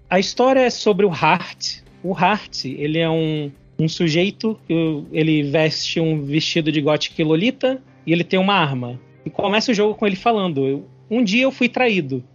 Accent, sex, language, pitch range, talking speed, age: Brazilian, male, Portuguese, 170-205 Hz, 180 wpm, 20-39